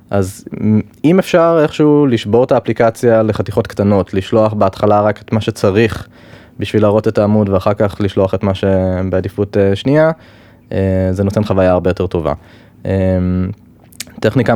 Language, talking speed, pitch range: Hebrew, 150 wpm, 95-120 Hz